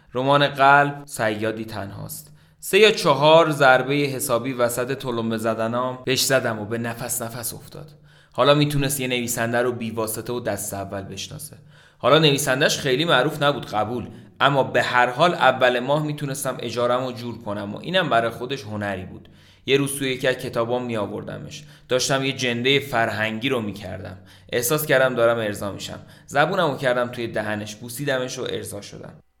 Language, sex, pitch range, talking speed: Persian, male, 110-145 Hz, 150 wpm